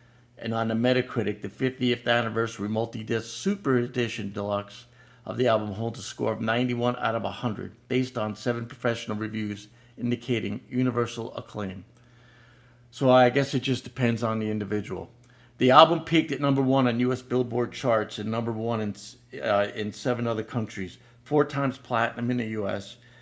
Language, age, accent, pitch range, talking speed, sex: English, 50-69, American, 110-125 Hz, 165 wpm, male